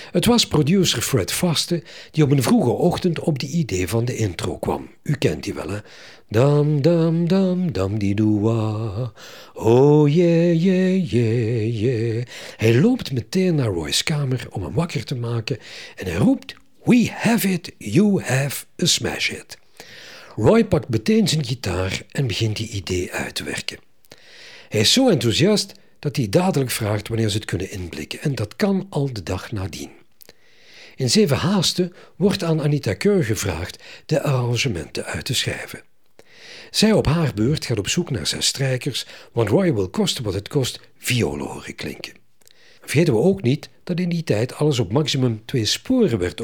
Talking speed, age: 170 wpm, 60-79